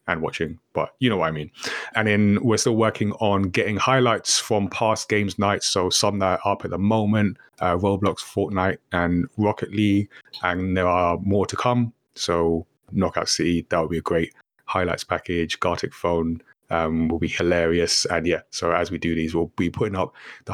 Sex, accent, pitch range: male, British, 90-105 Hz